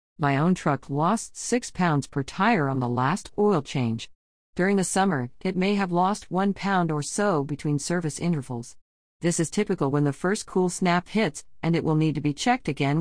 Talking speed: 205 wpm